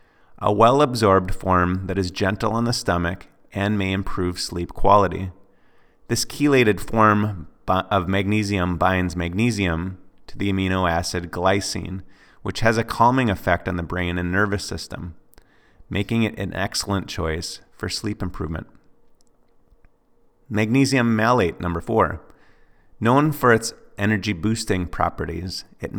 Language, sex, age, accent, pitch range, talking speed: English, male, 30-49, American, 90-110 Hz, 125 wpm